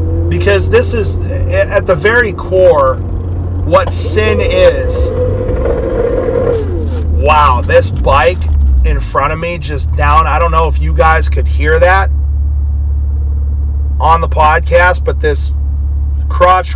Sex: male